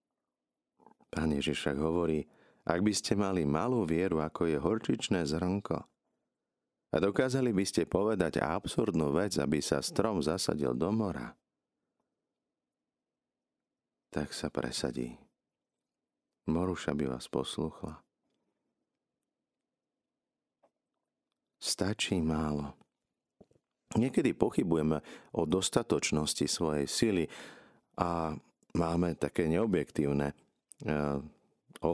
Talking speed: 85 wpm